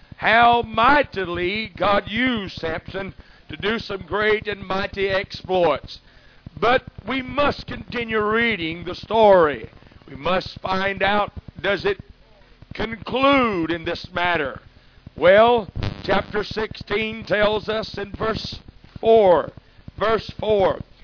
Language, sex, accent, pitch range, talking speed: English, male, American, 190-235 Hz, 110 wpm